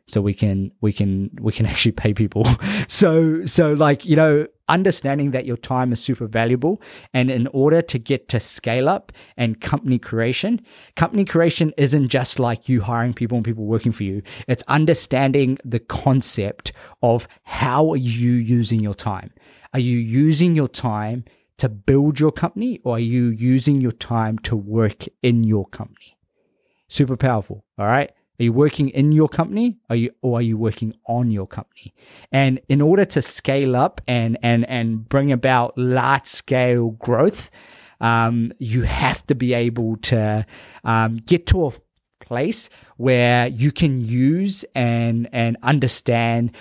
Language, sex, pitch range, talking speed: English, male, 115-140 Hz, 165 wpm